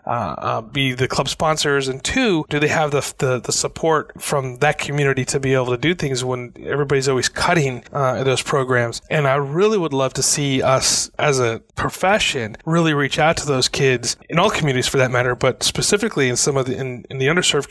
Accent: American